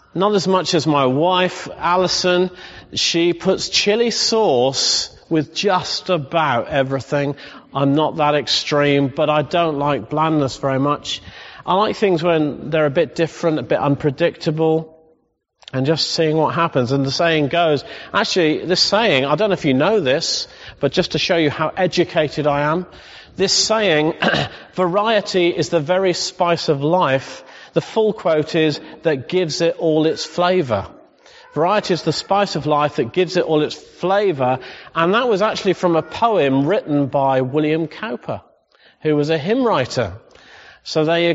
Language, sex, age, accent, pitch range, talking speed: English, male, 40-59, British, 145-180 Hz, 165 wpm